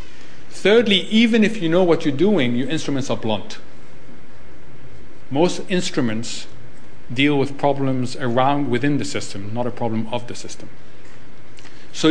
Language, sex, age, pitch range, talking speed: English, male, 50-69, 125-165 Hz, 140 wpm